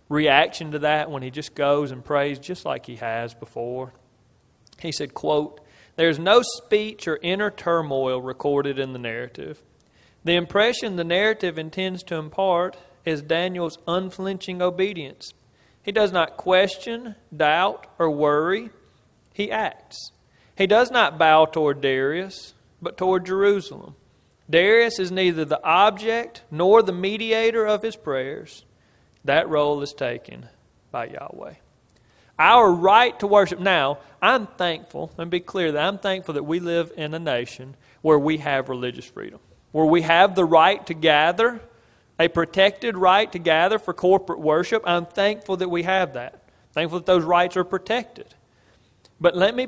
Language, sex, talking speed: English, male, 155 wpm